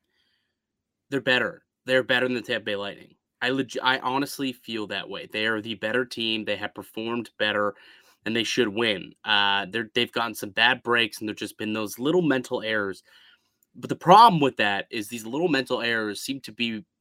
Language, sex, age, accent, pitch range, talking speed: English, male, 30-49, American, 110-130 Hz, 205 wpm